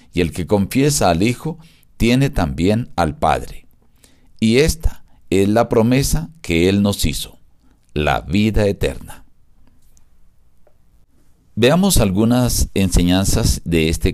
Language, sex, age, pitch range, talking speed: Spanish, male, 50-69, 85-125 Hz, 115 wpm